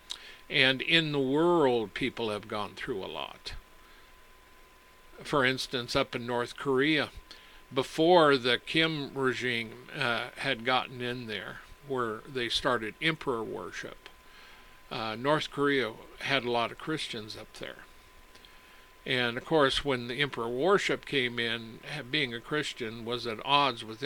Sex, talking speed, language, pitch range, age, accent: male, 140 wpm, English, 115-140 Hz, 60-79, American